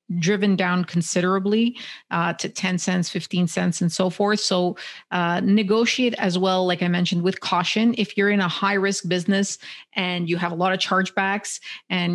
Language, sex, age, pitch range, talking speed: English, female, 30-49, 175-200 Hz, 185 wpm